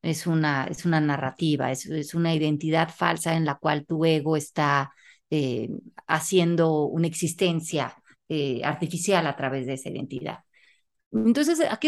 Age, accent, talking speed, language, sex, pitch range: 30-49, Mexican, 140 wpm, Spanish, female, 155-205 Hz